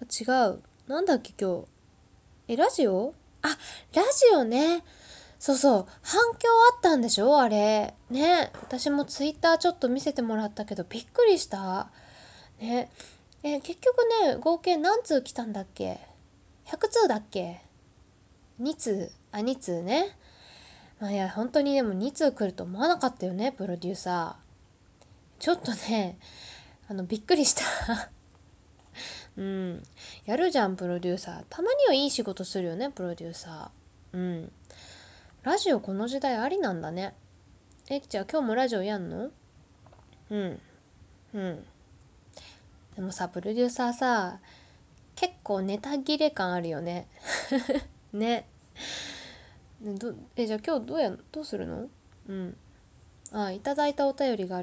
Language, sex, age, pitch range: Japanese, female, 20-39, 180-280 Hz